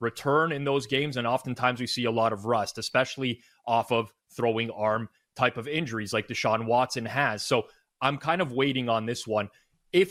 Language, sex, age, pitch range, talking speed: English, male, 30-49, 125-165 Hz, 195 wpm